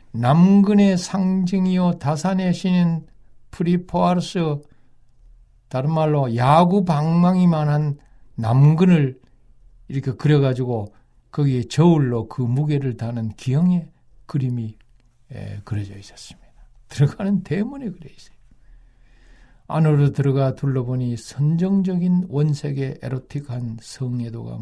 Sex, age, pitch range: male, 60-79, 120-175 Hz